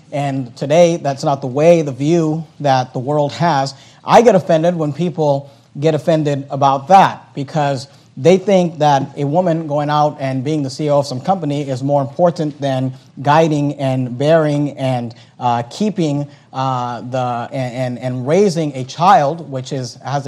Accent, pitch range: American, 135-170 Hz